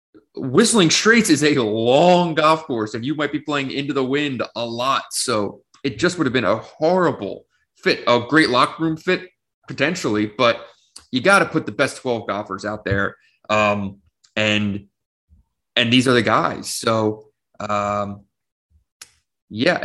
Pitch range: 105-130 Hz